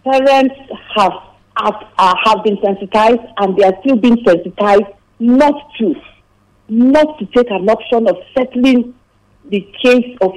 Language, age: English, 50-69